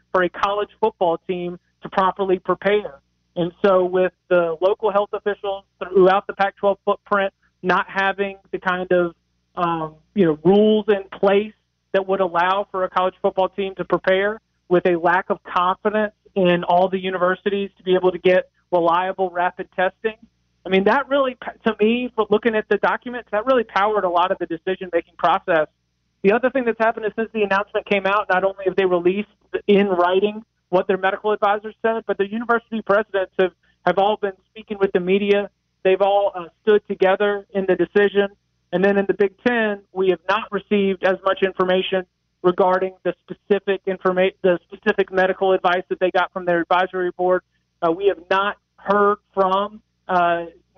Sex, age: male, 30-49